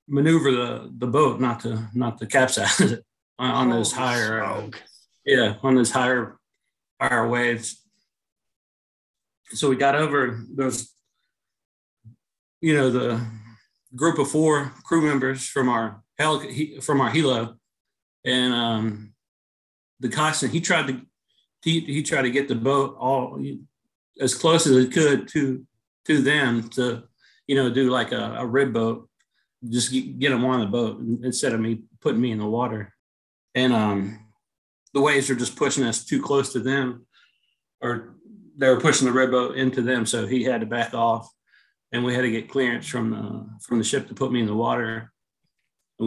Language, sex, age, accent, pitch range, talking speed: English, male, 40-59, American, 115-140 Hz, 170 wpm